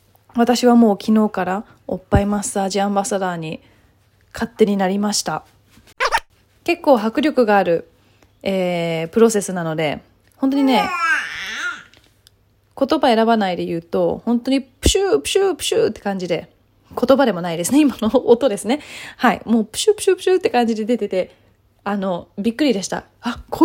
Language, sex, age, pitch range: Japanese, female, 20-39, 190-255 Hz